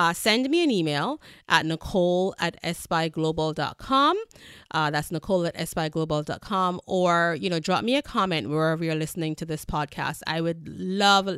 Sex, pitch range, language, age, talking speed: female, 155-185 Hz, English, 30-49, 160 wpm